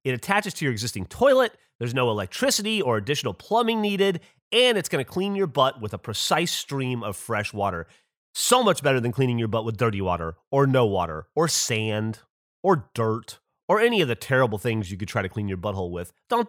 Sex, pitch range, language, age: male, 115-185 Hz, English, 30-49